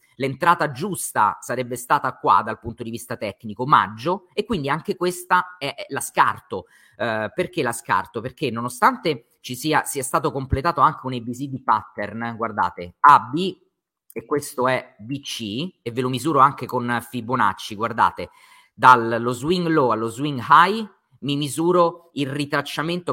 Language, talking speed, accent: Italian, 150 wpm, native